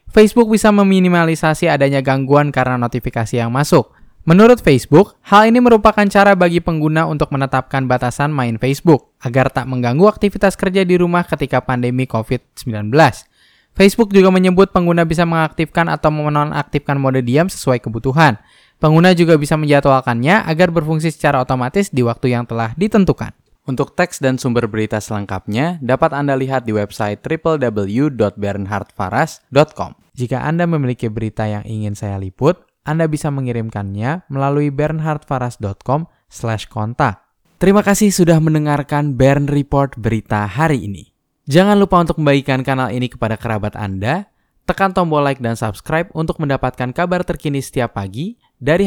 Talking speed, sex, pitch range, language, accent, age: 140 wpm, male, 120-165 Hz, Indonesian, native, 10-29